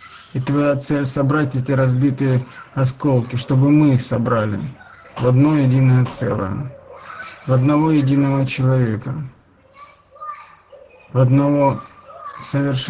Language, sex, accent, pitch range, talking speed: Russian, male, native, 120-140 Hz, 95 wpm